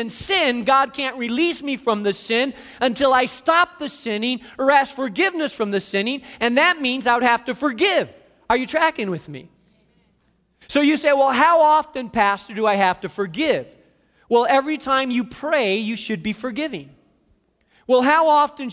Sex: male